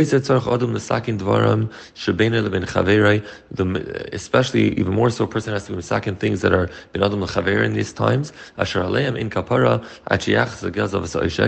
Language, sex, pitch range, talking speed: English, male, 100-125 Hz, 115 wpm